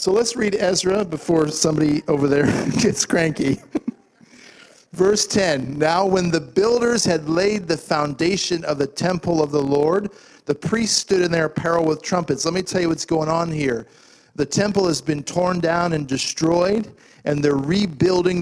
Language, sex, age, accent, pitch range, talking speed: English, male, 50-69, American, 155-185 Hz, 175 wpm